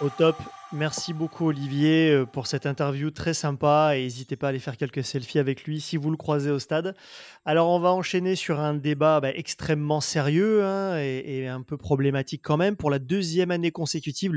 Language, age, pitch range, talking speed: French, 30-49, 140-170 Hz, 205 wpm